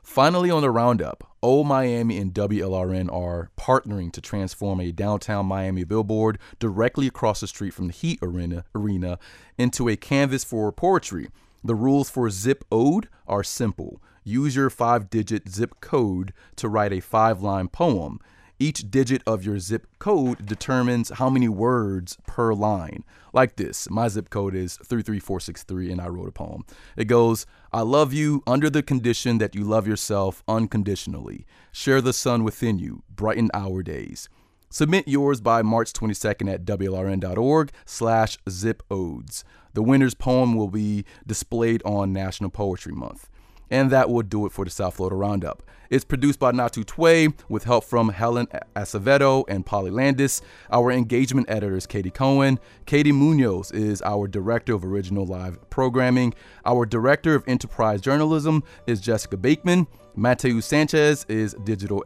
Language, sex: English, male